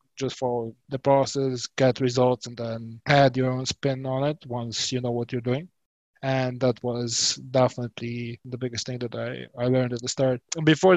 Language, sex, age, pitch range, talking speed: English, male, 20-39, 125-135 Hz, 190 wpm